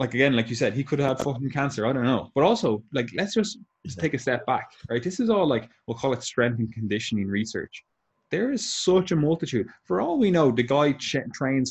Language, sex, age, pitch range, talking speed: English, male, 20-39, 110-140 Hz, 235 wpm